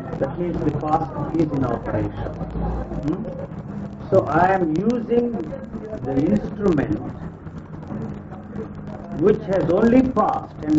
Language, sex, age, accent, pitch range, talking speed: English, male, 50-69, Indian, 155-195 Hz, 105 wpm